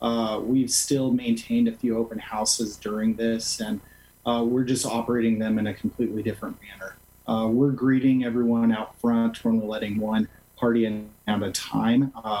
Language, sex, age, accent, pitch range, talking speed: English, male, 30-49, American, 110-130 Hz, 175 wpm